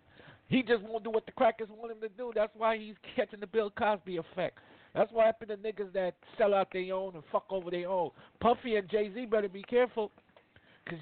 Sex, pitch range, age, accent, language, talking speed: male, 180-225 Hz, 50-69, American, English, 225 wpm